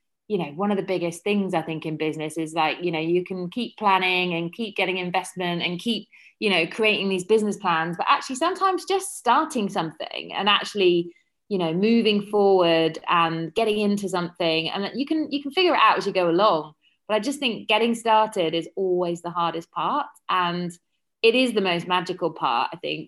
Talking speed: 210 wpm